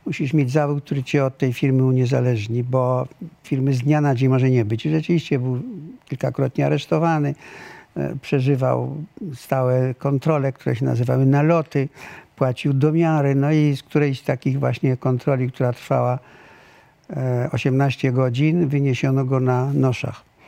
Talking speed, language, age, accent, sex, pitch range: 140 wpm, Polish, 60-79, native, male, 130-155 Hz